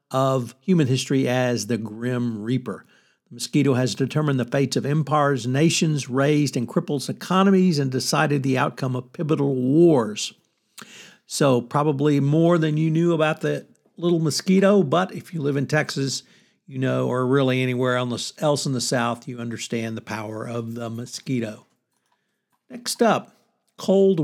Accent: American